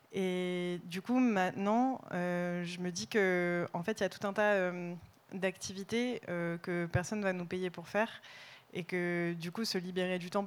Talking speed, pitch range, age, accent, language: 205 wpm, 170-195 Hz, 20-39, French, French